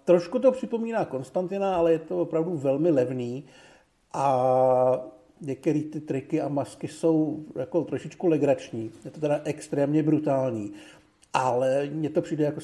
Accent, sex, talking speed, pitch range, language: native, male, 140 wpm, 135-160 Hz, Czech